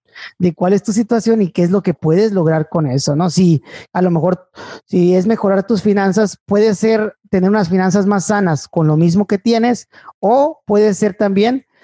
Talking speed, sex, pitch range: 205 wpm, male, 165-205 Hz